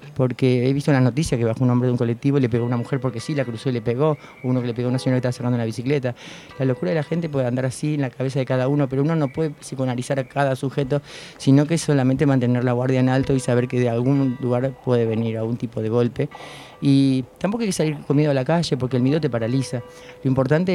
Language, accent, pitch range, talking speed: Spanish, Argentinian, 125-140 Hz, 285 wpm